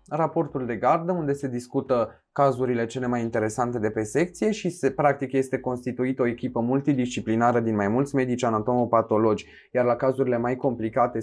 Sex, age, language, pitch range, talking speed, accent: male, 20-39, Romanian, 115-155 Hz, 165 wpm, native